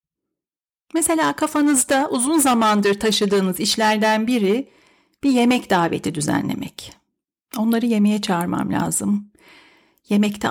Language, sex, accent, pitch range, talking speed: Turkish, female, native, 210-295 Hz, 90 wpm